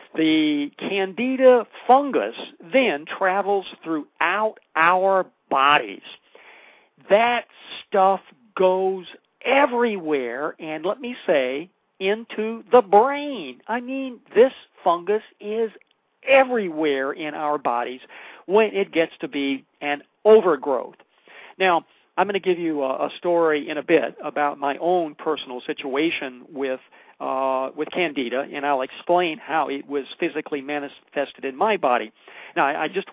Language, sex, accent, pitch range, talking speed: English, male, American, 140-195 Hz, 130 wpm